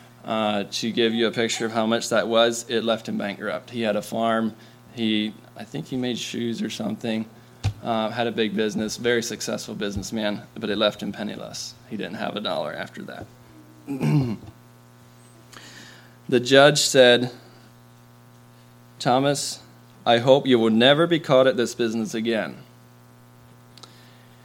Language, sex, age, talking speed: English, male, 20-39, 150 wpm